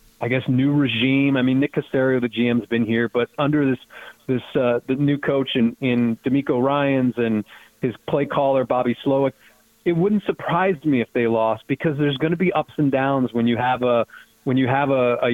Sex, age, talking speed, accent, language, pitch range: male, 30-49, 205 wpm, American, English, 125-145 Hz